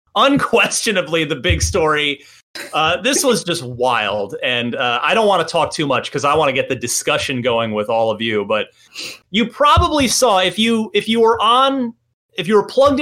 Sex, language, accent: male, English, American